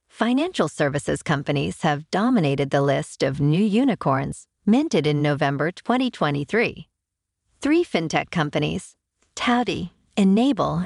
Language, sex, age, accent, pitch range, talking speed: English, female, 50-69, American, 145-230 Hz, 105 wpm